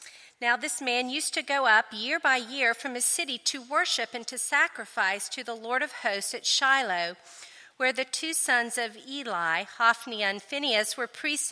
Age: 50-69